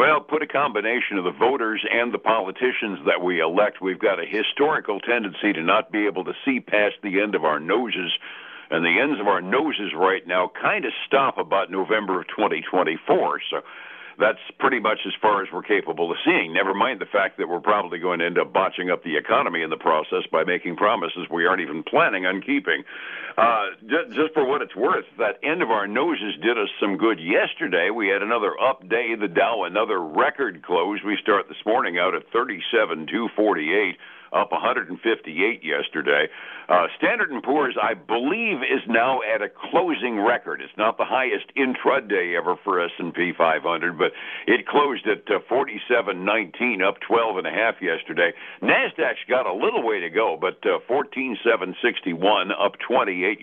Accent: American